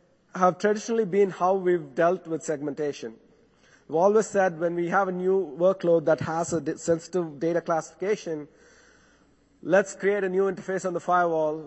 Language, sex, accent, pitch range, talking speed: English, male, Indian, 155-185 Hz, 160 wpm